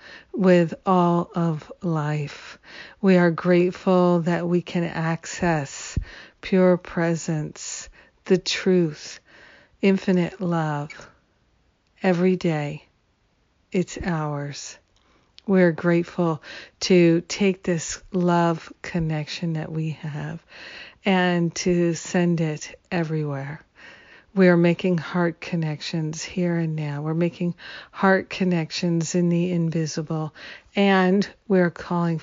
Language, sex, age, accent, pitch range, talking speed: English, female, 50-69, American, 160-180 Hz, 100 wpm